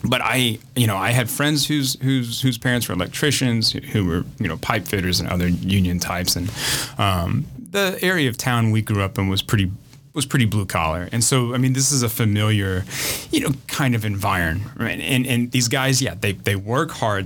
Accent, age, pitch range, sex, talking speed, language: American, 30-49, 100-130 Hz, male, 210 wpm, English